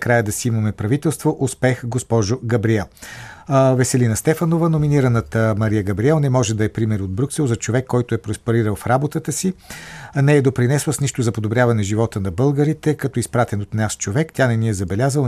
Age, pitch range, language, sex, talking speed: 50-69, 110-135 Hz, Bulgarian, male, 190 wpm